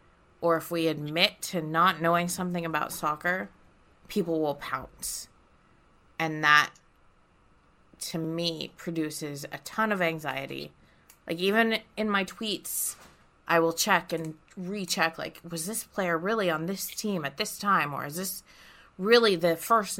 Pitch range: 160-190 Hz